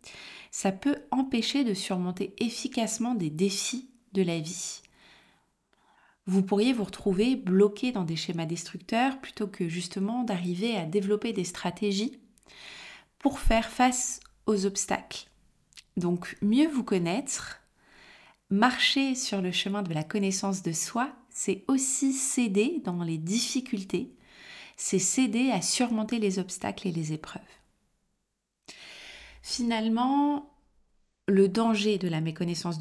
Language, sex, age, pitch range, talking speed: French, female, 30-49, 185-245 Hz, 125 wpm